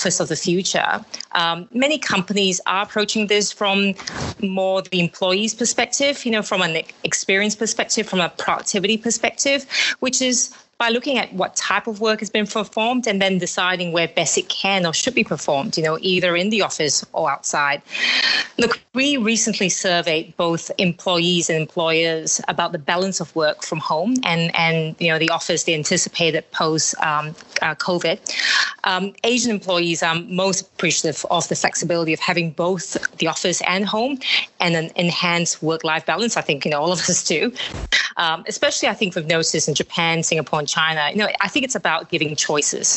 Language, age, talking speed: English, 30-49, 180 wpm